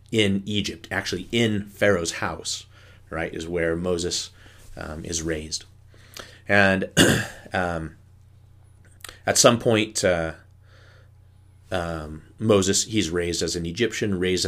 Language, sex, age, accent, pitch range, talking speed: English, male, 30-49, American, 85-100 Hz, 110 wpm